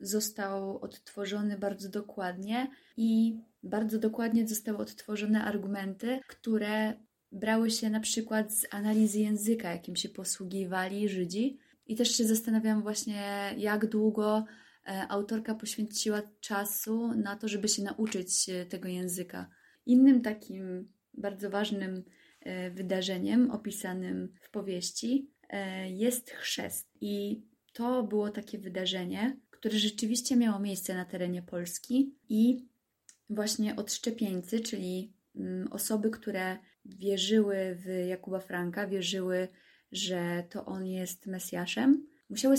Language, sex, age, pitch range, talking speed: Polish, female, 20-39, 190-220 Hz, 110 wpm